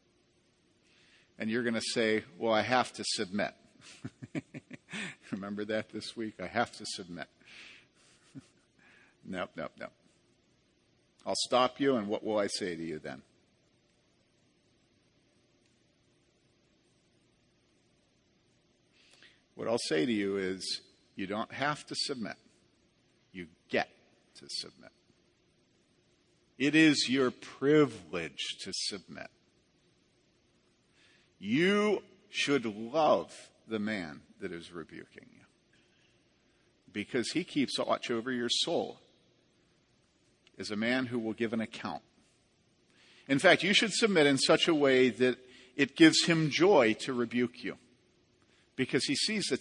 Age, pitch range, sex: 50-69, 110-150 Hz, male